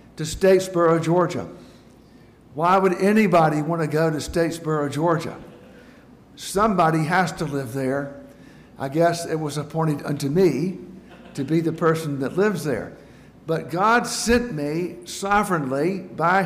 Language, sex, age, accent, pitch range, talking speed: English, male, 60-79, American, 155-190 Hz, 130 wpm